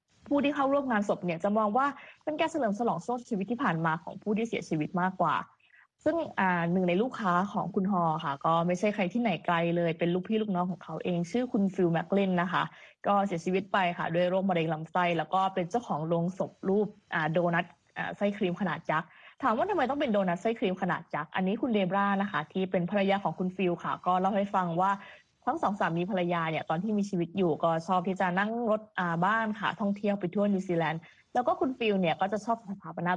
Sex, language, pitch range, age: female, Thai, 175-220 Hz, 20-39